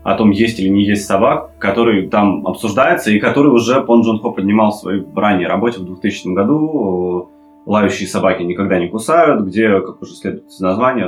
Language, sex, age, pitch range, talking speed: Russian, male, 20-39, 90-110 Hz, 190 wpm